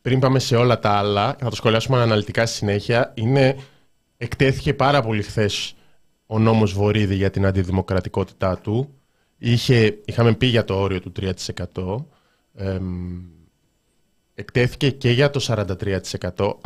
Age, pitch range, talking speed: 20-39, 105-145 Hz, 135 wpm